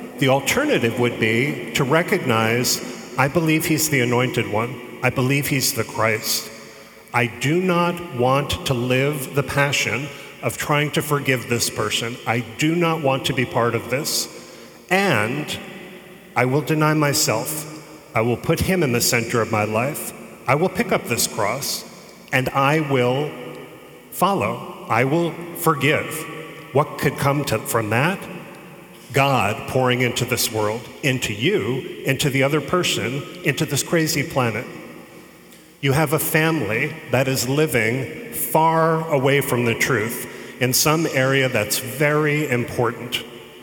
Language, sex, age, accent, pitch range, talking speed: English, male, 40-59, American, 120-155 Hz, 145 wpm